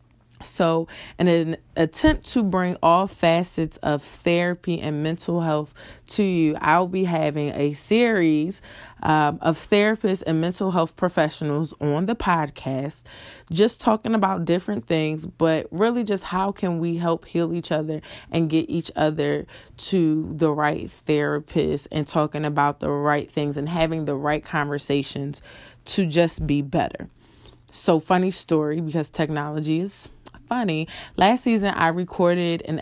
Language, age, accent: English, 20-39, American